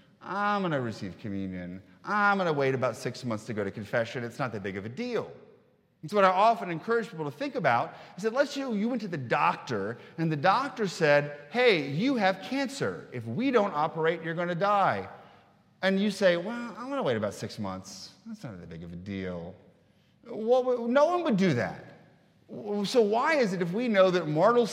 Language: English